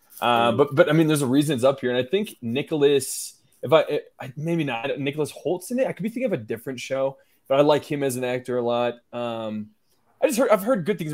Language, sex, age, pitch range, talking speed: English, male, 20-39, 120-140 Hz, 265 wpm